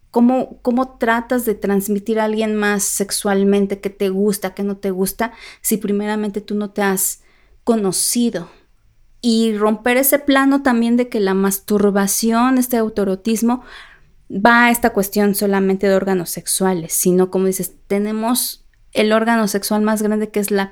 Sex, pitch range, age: female, 190-230 Hz, 30-49